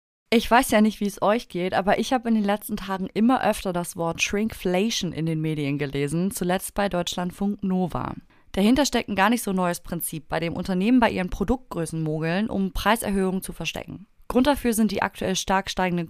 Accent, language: German, German